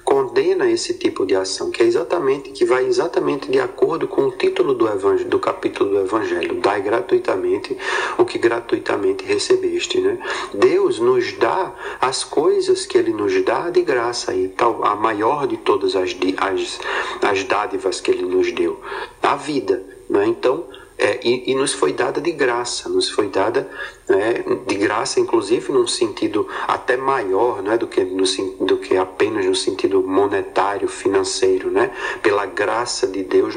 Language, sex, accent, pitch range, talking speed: Portuguese, male, Brazilian, 360-395 Hz, 165 wpm